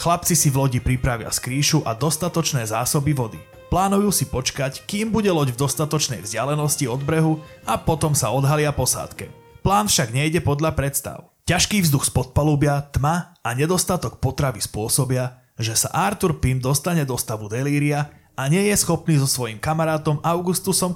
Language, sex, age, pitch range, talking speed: Slovak, male, 30-49, 125-160 Hz, 160 wpm